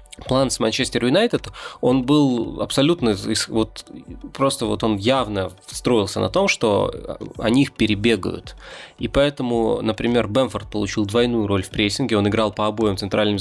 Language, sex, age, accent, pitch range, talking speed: Russian, male, 20-39, native, 105-130 Hz, 150 wpm